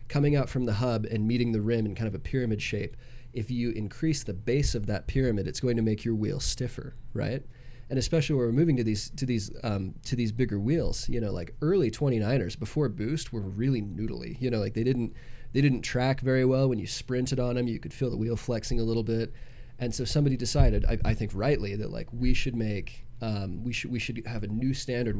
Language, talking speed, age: English, 240 wpm, 20-39